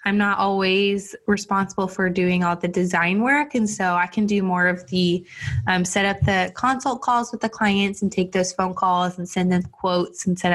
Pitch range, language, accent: 180-200 Hz, English, American